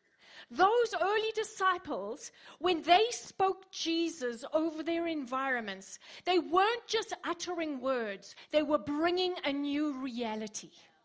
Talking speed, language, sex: 115 wpm, English, female